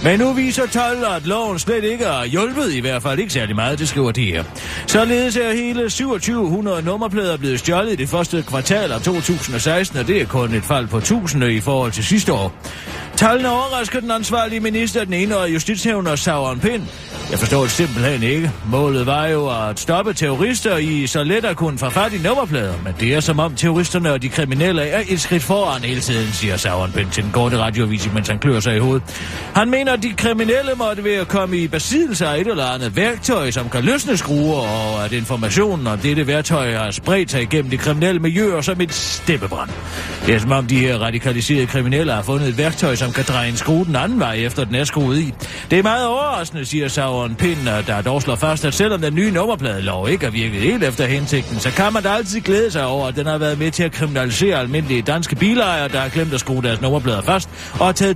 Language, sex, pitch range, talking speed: Danish, male, 125-195 Hz, 225 wpm